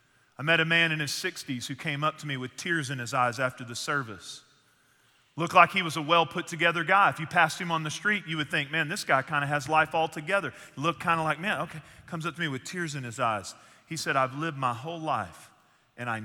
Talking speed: 250 wpm